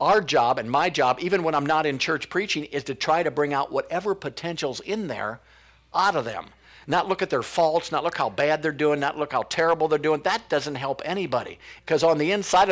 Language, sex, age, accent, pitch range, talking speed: English, male, 50-69, American, 125-155 Hz, 235 wpm